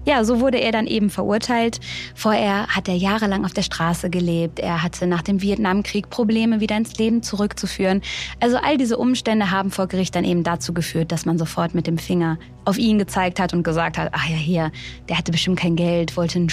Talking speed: 215 wpm